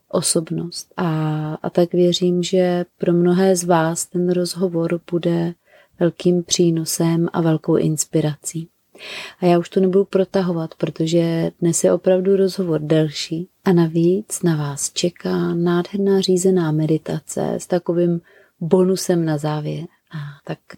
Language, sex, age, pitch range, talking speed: Czech, female, 30-49, 165-180 Hz, 125 wpm